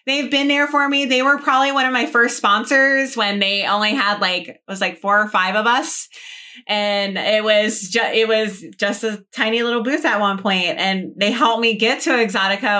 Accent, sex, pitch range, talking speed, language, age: American, female, 205-255 Hz, 215 wpm, English, 20-39